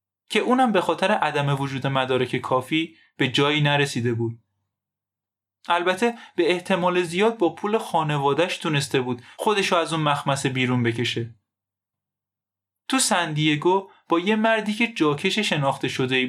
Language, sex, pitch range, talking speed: Persian, male, 120-175 Hz, 135 wpm